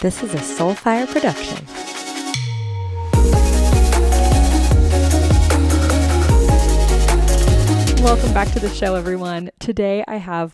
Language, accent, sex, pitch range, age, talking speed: English, American, female, 170-230 Hz, 20-39, 80 wpm